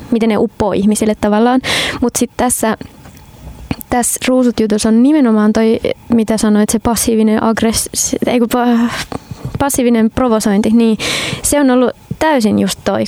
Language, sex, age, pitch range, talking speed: Finnish, female, 20-39, 215-245 Hz, 130 wpm